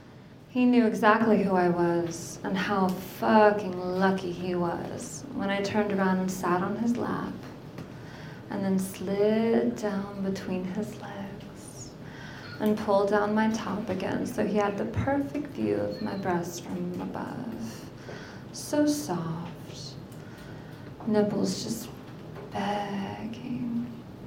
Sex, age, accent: female, 20-39, American